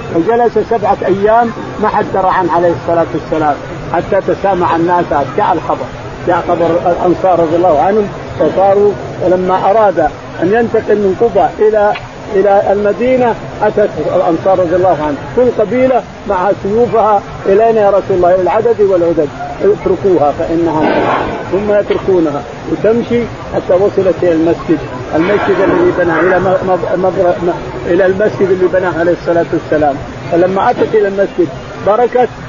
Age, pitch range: 50-69, 170-210 Hz